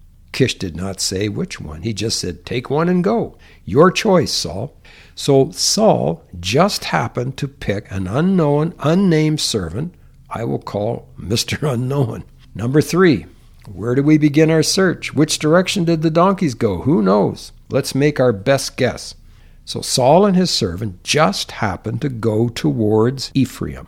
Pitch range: 100-145 Hz